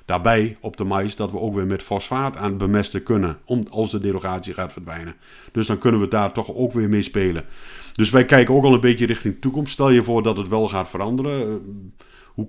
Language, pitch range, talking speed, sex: Dutch, 95-120 Hz, 235 wpm, male